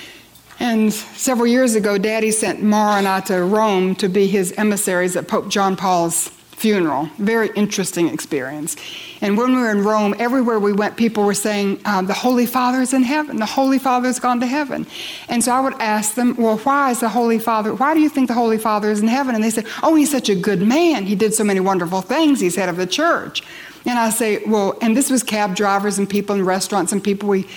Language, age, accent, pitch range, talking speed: English, 60-79, American, 195-240 Hz, 235 wpm